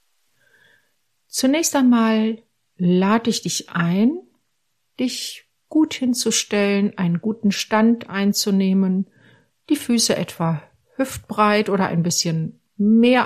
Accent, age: German, 50-69